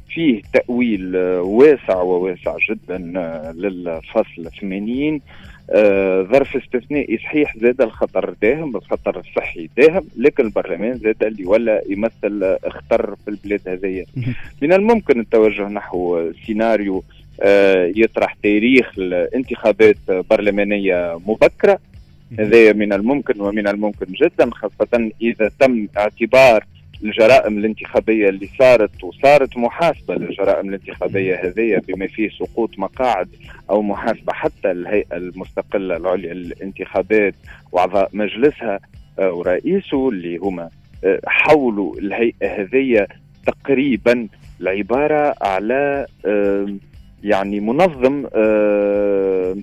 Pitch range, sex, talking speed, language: 95-125 Hz, male, 100 wpm, Arabic